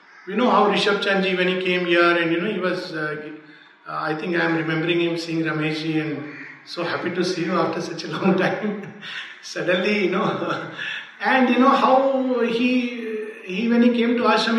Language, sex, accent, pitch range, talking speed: English, male, Indian, 170-230 Hz, 200 wpm